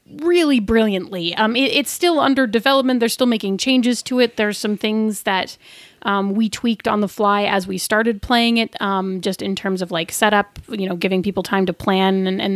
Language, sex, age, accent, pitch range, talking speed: English, female, 30-49, American, 190-240 Hz, 215 wpm